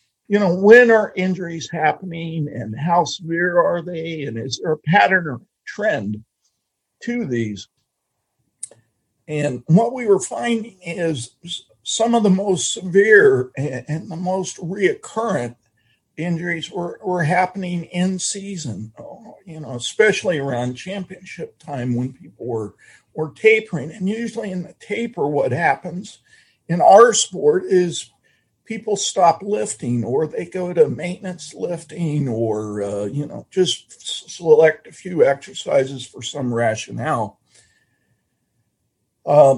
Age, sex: 50-69, male